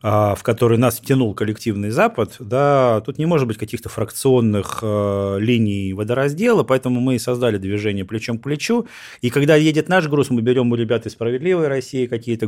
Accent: native